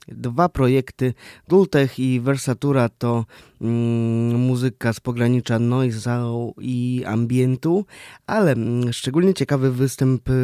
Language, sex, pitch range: Polish, male, 120-140 Hz